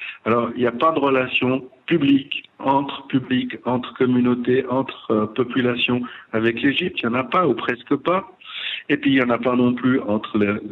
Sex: male